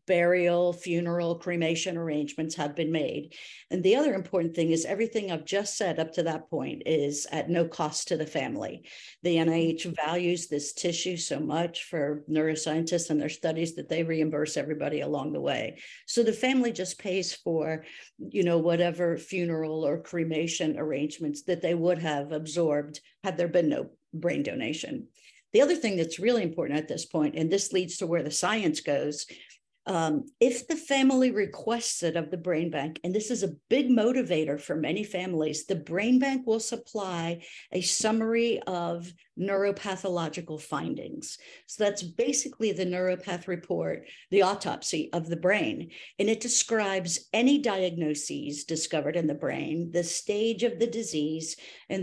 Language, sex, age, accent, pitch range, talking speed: English, female, 50-69, American, 160-200 Hz, 165 wpm